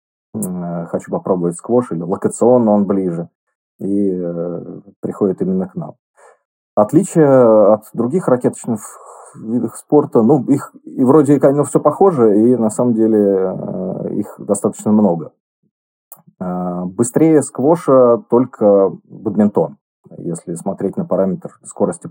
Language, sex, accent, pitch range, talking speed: Russian, male, native, 90-135 Hz, 120 wpm